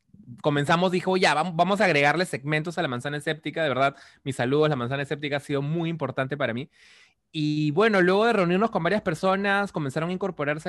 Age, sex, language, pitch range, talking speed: 20-39, male, Spanish, 135-180 Hz, 195 wpm